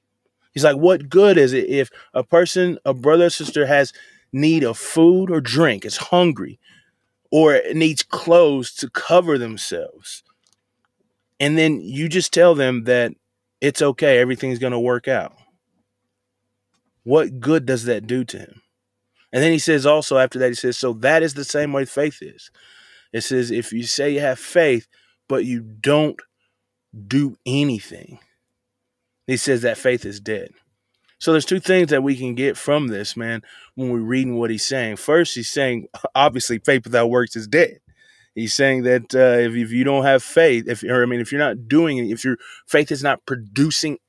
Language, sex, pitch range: English, male, 120-155 Hz